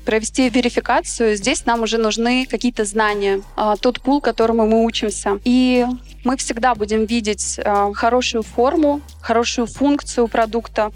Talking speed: 125 wpm